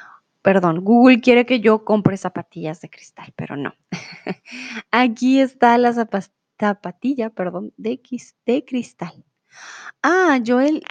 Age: 20-39